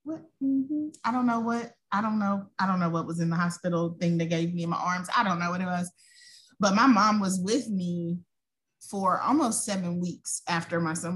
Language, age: English, 20-39